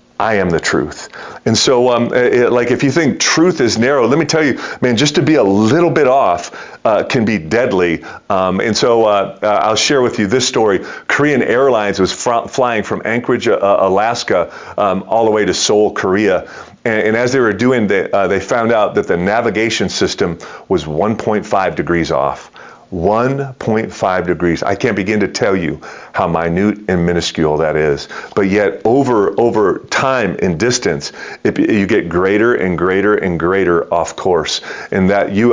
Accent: American